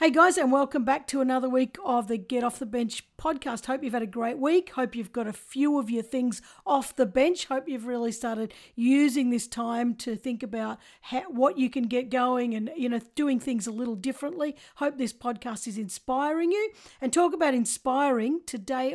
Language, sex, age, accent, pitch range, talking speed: English, female, 50-69, Australian, 235-280 Hz, 210 wpm